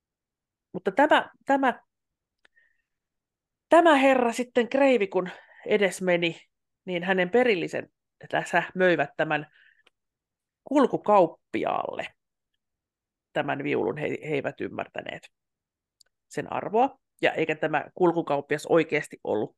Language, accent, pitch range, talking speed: Finnish, native, 165-265 Hz, 100 wpm